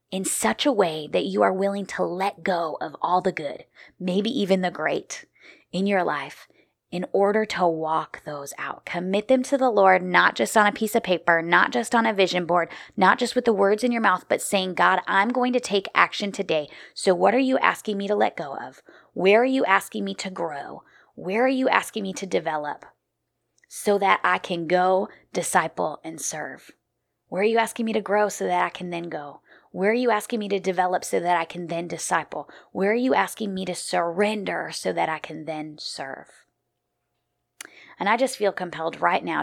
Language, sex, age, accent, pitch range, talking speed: English, female, 20-39, American, 165-210 Hz, 215 wpm